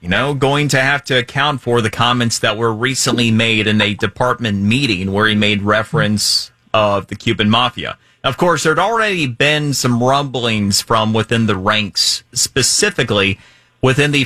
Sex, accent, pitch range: male, American, 105-130 Hz